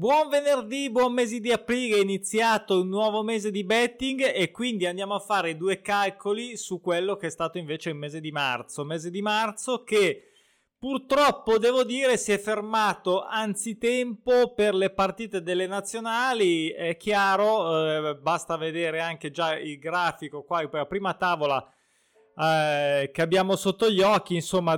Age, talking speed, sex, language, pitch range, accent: 20-39, 160 wpm, male, Italian, 170-215 Hz, native